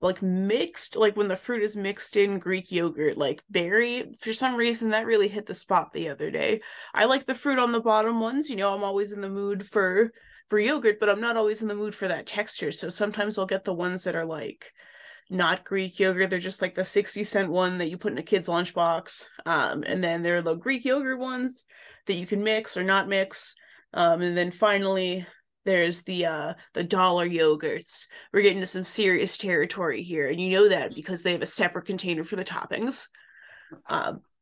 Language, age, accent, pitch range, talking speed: English, 20-39, American, 185-225 Hz, 220 wpm